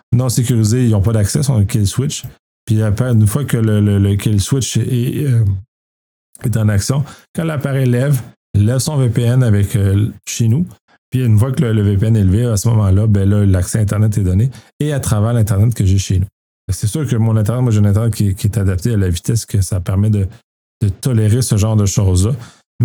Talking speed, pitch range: 230 wpm, 100-120 Hz